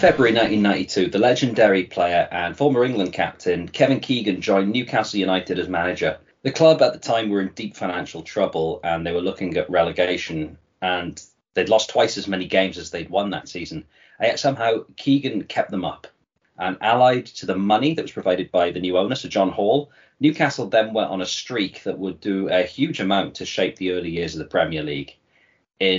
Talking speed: 200 wpm